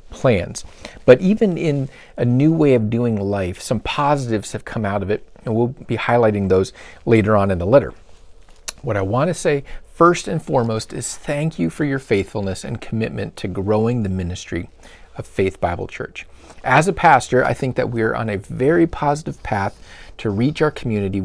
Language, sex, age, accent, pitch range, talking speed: English, male, 40-59, American, 100-130 Hz, 190 wpm